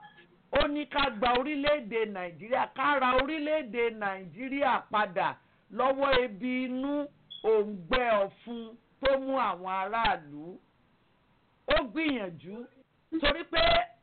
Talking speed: 80 wpm